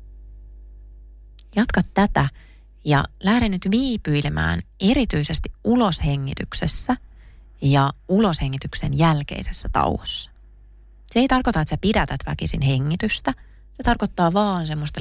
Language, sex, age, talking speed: Finnish, female, 30-49, 95 wpm